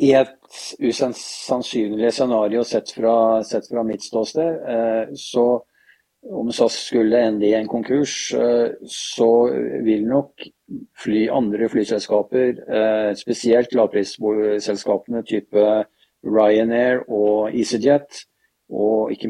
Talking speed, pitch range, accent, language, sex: 100 wpm, 105-120 Hz, Norwegian, Swedish, male